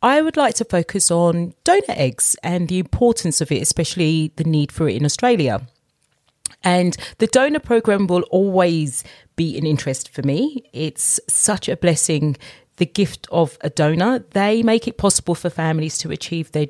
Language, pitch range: English, 155-210 Hz